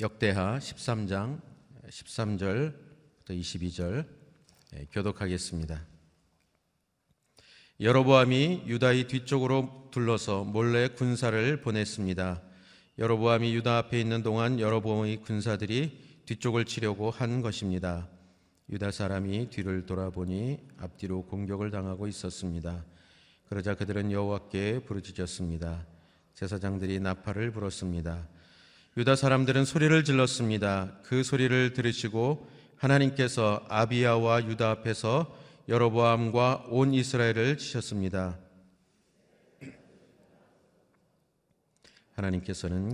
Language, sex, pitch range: Korean, male, 95-125 Hz